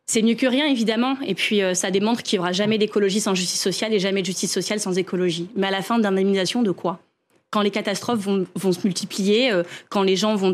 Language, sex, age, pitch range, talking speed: French, female, 20-39, 195-245 Hz, 250 wpm